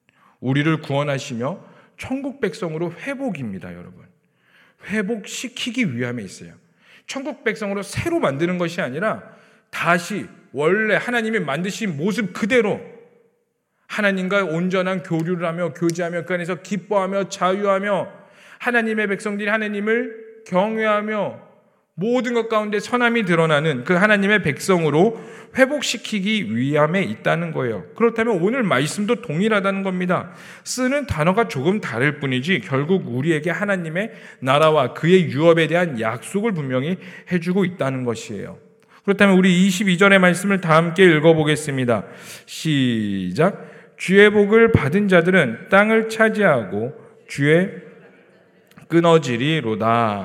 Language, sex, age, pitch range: Korean, male, 40-59, 160-215 Hz